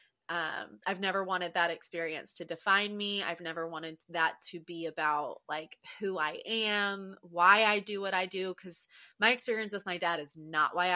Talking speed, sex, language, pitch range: 190 wpm, female, English, 170-200 Hz